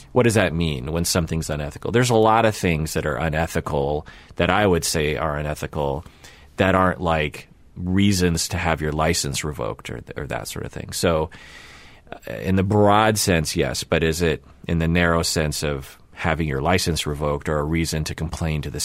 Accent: American